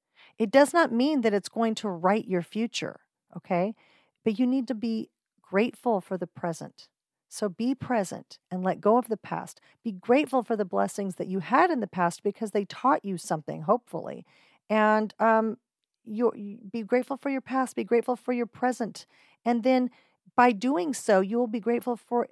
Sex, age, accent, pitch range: female, 40-59, American, 185-235 Hz